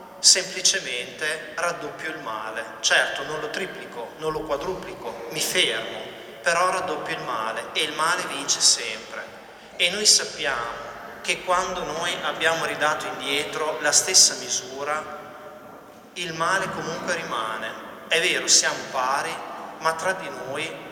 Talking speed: 130 wpm